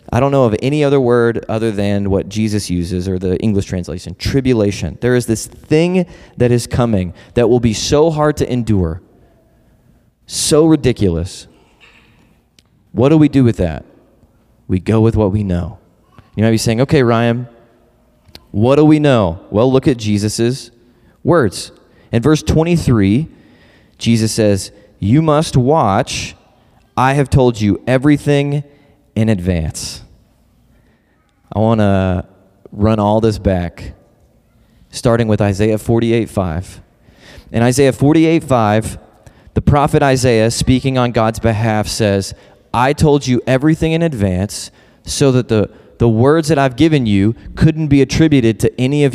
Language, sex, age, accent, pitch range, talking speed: English, male, 20-39, American, 100-135 Hz, 145 wpm